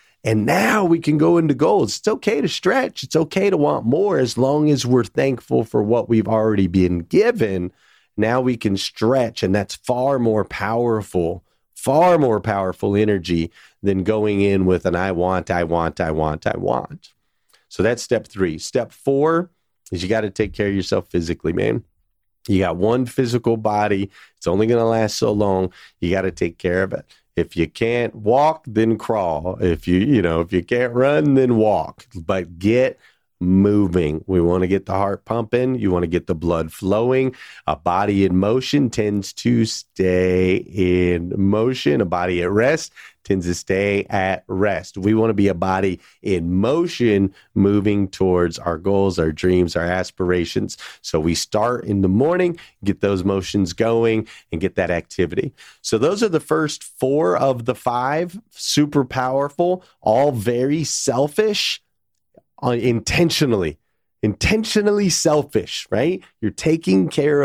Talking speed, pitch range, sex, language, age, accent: 170 wpm, 95-130 Hz, male, English, 40-59, American